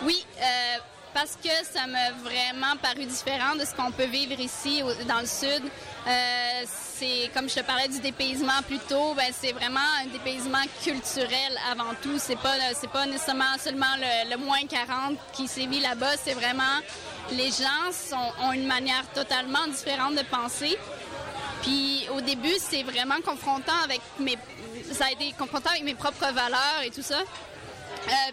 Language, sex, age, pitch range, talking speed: French, female, 20-39, 250-280 Hz, 175 wpm